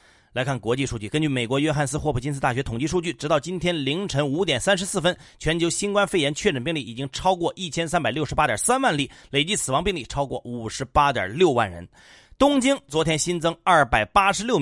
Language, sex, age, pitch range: Chinese, male, 30-49, 140-190 Hz